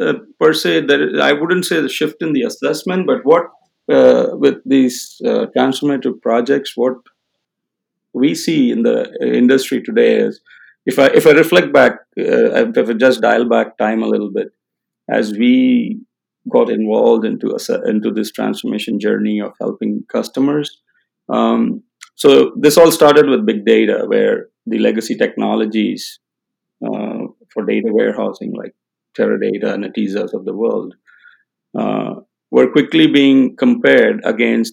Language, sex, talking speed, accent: English, male, 150 wpm, Indian